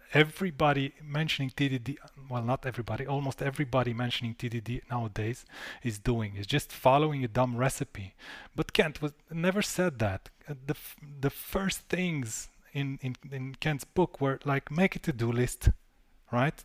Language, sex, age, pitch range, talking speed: Romanian, male, 30-49, 120-150 Hz, 150 wpm